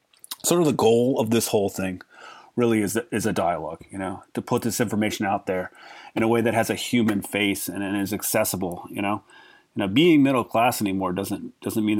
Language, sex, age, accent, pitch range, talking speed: English, male, 30-49, American, 100-125 Hz, 220 wpm